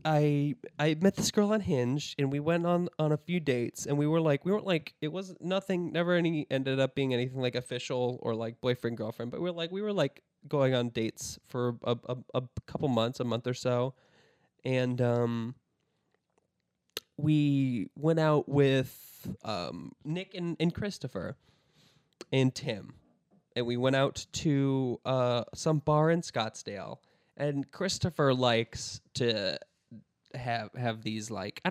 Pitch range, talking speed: 120-155 Hz, 170 wpm